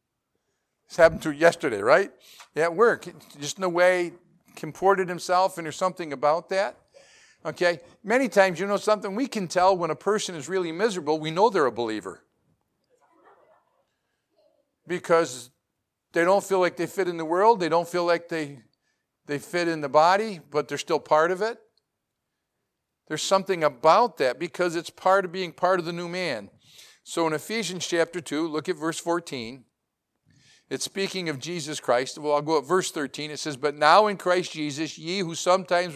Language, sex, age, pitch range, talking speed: English, male, 50-69, 155-185 Hz, 180 wpm